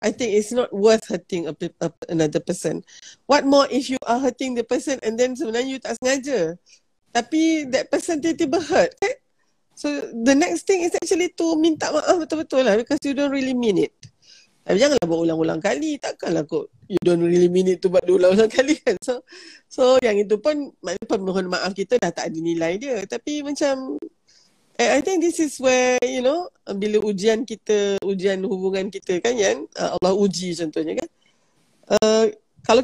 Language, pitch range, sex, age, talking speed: Malay, 185-285 Hz, female, 40-59, 185 wpm